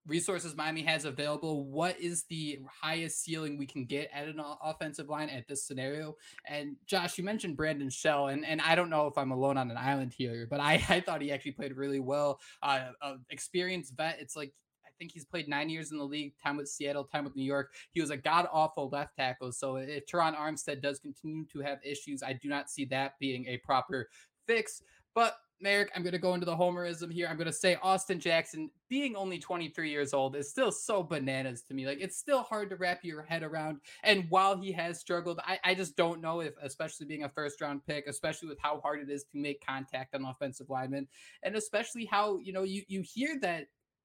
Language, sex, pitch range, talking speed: English, male, 140-180 Hz, 225 wpm